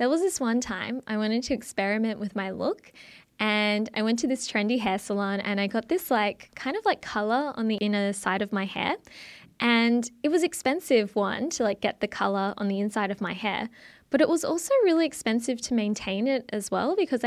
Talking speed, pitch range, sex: 220 wpm, 205-255 Hz, female